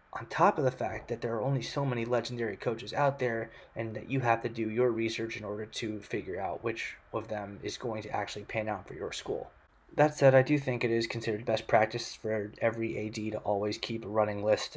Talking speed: 240 wpm